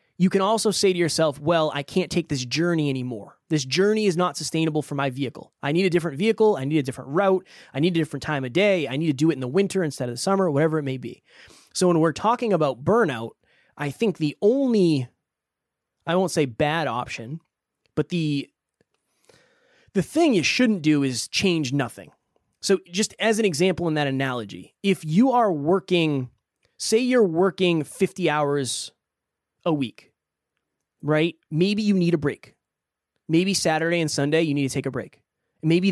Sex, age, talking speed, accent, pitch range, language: male, 20-39, 190 wpm, American, 145-185 Hz, English